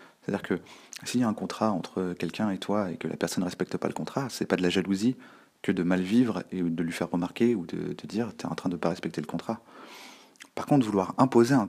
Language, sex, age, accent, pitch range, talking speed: French, male, 30-49, French, 95-110 Hz, 280 wpm